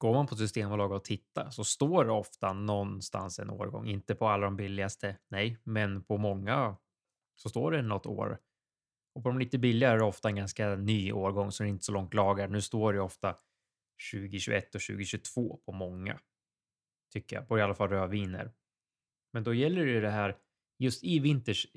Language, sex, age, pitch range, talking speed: Swedish, male, 20-39, 100-120 Hz, 195 wpm